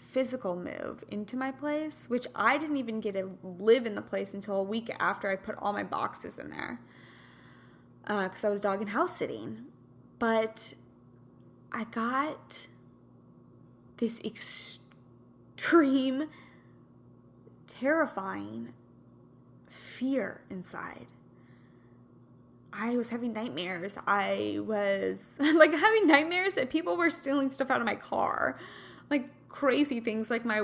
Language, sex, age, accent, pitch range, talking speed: English, female, 10-29, American, 200-275 Hz, 125 wpm